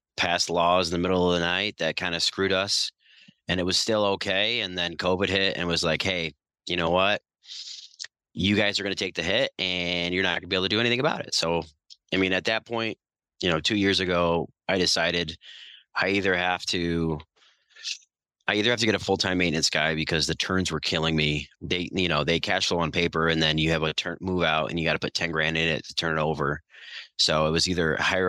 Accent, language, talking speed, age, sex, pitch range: American, English, 245 wpm, 30-49, male, 80-95 Hz